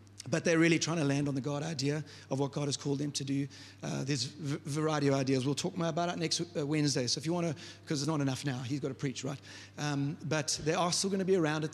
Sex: male